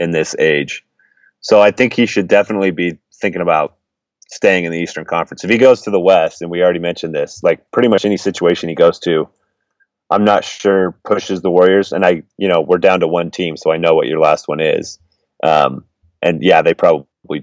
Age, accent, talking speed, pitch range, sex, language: 30-49, American, 220 wpm, 85-105 Hz, male, English